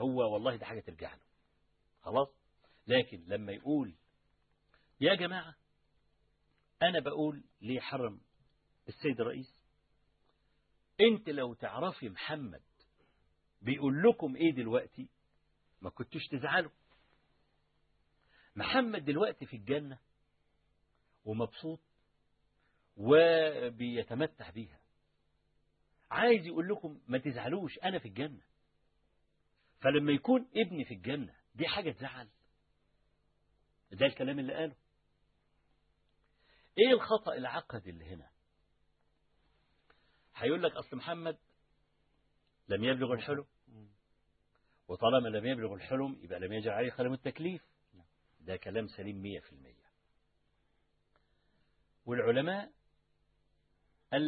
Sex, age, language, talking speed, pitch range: male, 50-69, Arabic, 95 wpm, 100-155 Hz